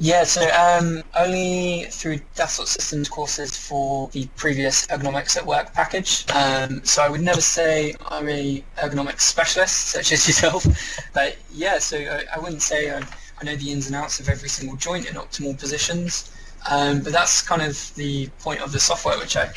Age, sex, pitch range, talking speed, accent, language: 20-39, male, 140-160 Hz, 185 wpm, British, English